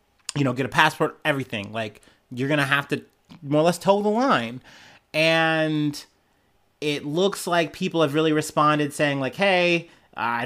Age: 30-49